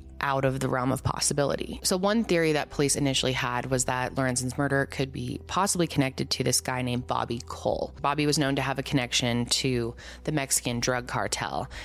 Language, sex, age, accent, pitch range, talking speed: English, female, 20-39, American, 125-155 Hz, 195 wpm